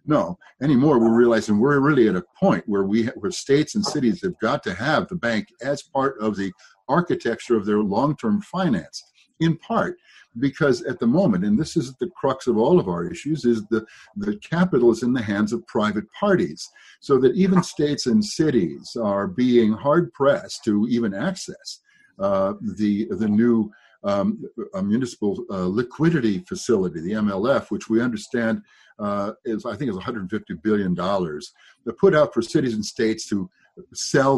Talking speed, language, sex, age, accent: 180 wpm, English, male, 60-79, American